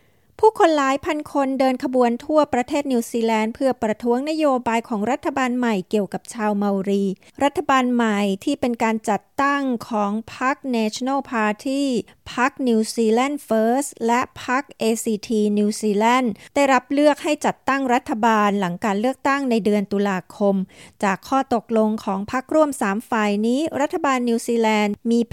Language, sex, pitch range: Thai, female, 210-260 Hz